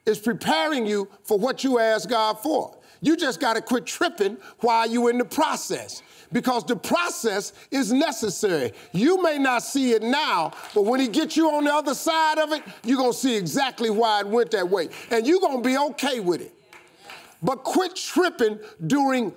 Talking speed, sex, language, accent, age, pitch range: 190 wpm, male, English, American, 50-69, 235-315 Hz